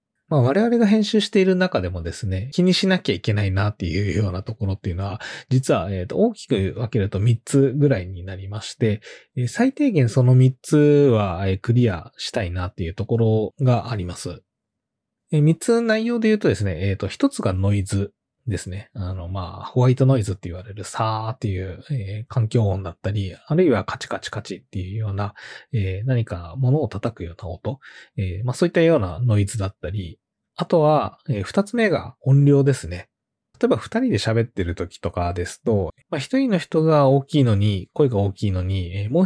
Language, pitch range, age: Japanese, 100-140 Hz, 20-39